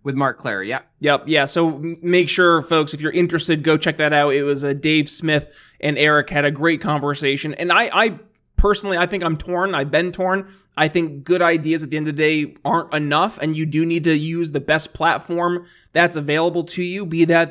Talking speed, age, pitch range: 230 wpm, 20-39, 155-180 Hz